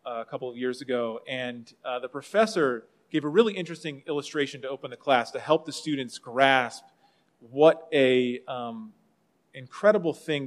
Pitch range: 125-160 Hz